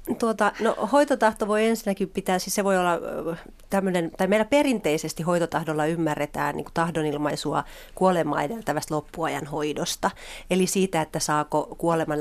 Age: 30-49